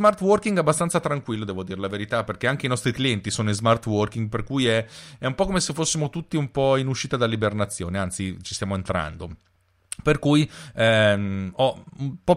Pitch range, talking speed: 105-145 Hz, 205 wpm